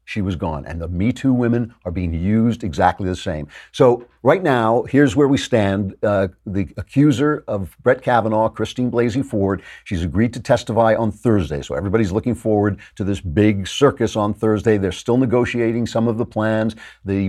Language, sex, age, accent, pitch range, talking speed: English, male, 50-69, American, 95-120 Hz, 185 wpm